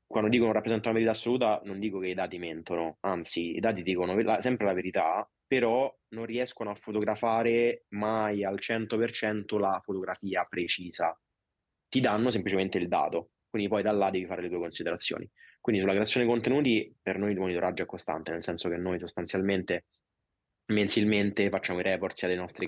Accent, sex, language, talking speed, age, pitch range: native, male, Italian, 175 wpm, 20-39, 90-105 Hz